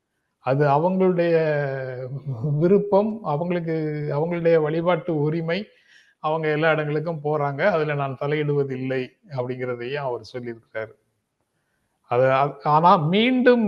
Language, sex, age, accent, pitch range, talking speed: Tamil, male, 30-49, native, 140-195 Hz, 90 wpm